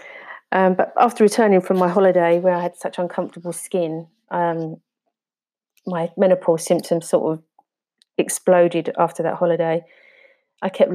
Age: 30-49